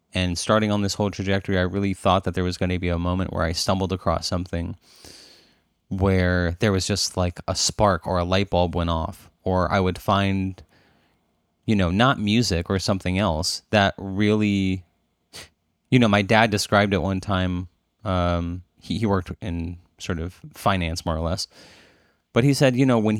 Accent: American